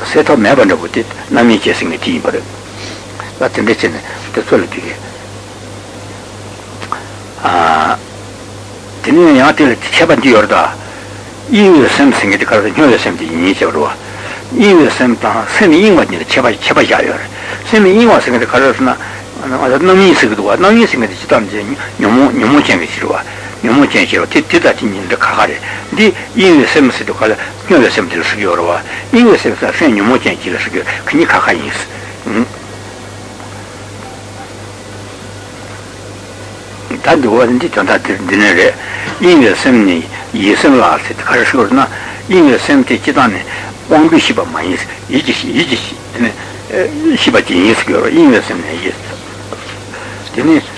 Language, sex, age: Italian, male, 60-79